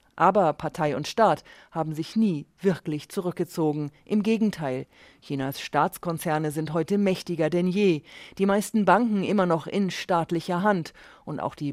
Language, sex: German, female